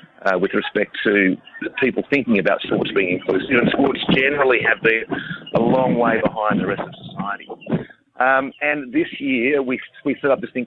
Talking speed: 185 wpm